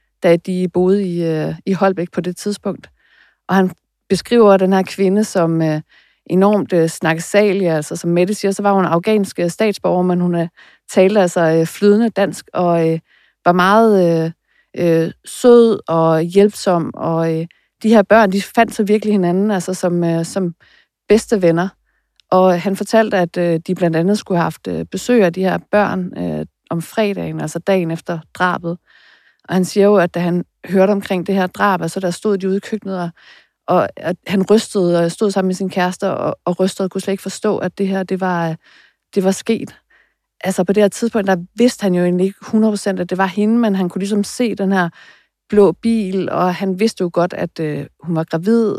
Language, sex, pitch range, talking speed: Danish, female, 175-200 Hz, 190 wpm